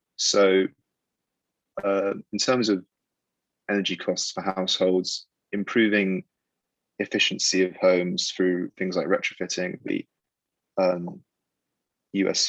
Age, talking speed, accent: 20-39, 95 wpm, British